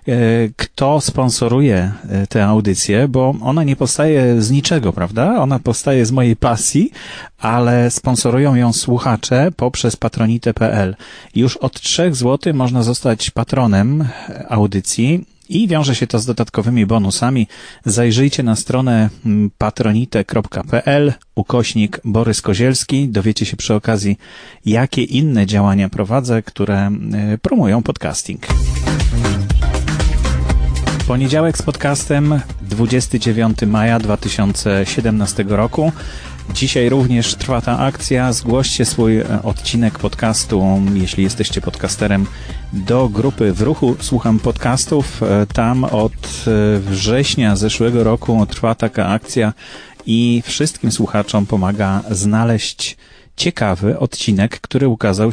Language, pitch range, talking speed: English, 105-130 Hz, 105 wpm